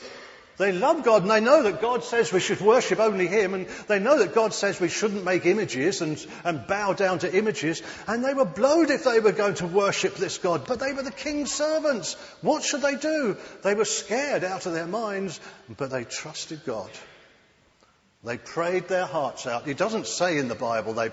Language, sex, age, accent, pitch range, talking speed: English, male, 50-69, British, 150-215 Hz, 215 wpm